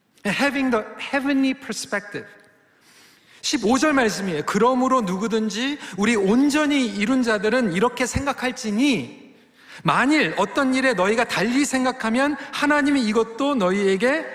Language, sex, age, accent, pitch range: Korean, male, 40-59, native, 190-255 Hz